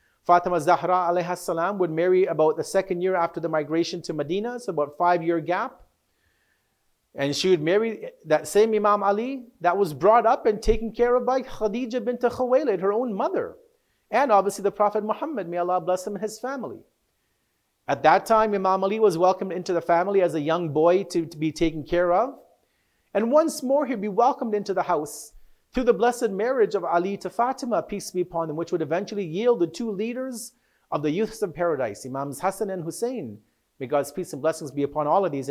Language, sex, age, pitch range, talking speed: English, male, 40-59, 170-225 Hz, 205 wpm